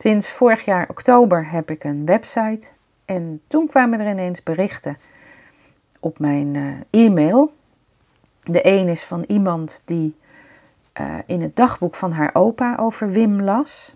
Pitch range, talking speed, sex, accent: 165-210 Hz, 145 wpm, female, Dutch